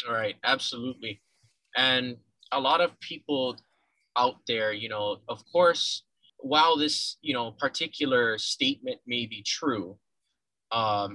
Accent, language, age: American, English, 20-39